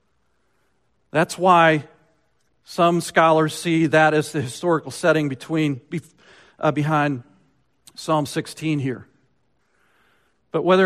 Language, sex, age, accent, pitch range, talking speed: English, male, 50-69, American, 140-175 Hz, 100 wpm